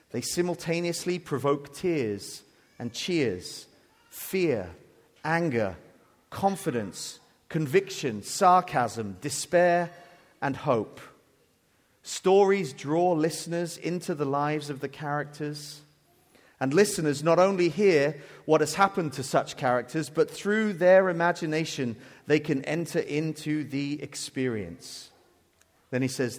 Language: English